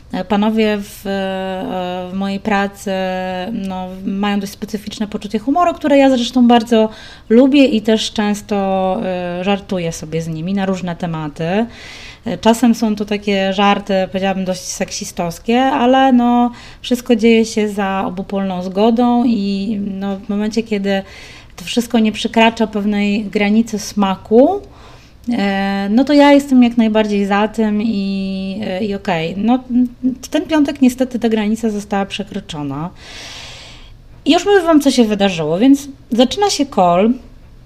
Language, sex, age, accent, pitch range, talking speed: Polish, female, 20-39, native, 190-240 Hz, 135 wpm